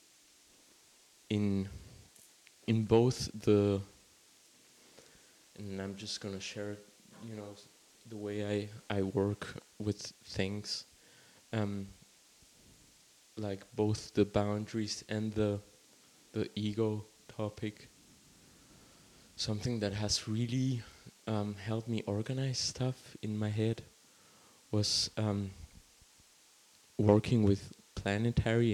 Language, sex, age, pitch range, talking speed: English, male, 20-39, 100-110 Hz, 95 wpm